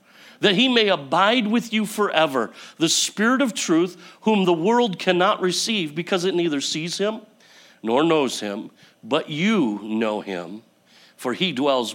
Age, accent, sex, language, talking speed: 50-69, American, male, English, 155 wpm